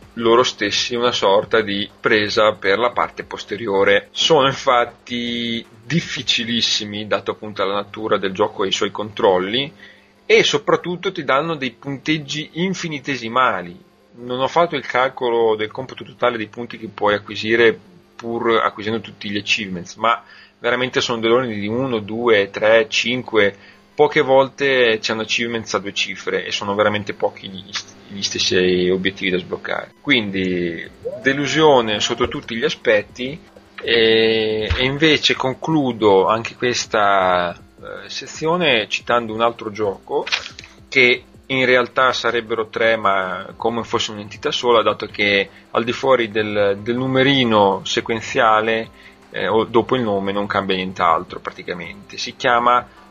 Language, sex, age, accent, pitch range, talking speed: Italian, male, 30-49, native, 105-125 Hz, 140 wpm